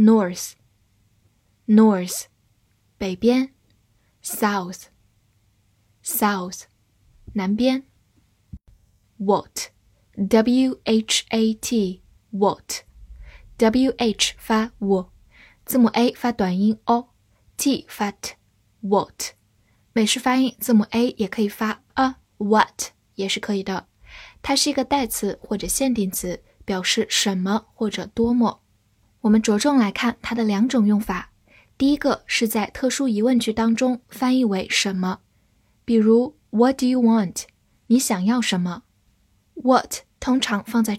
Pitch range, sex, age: 190-235 Hz, female, 10-29